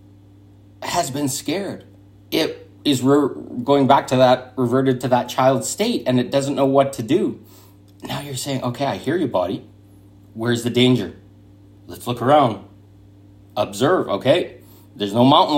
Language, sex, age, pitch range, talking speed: English, male, 30-49, 100-140 Hz, 160 wpm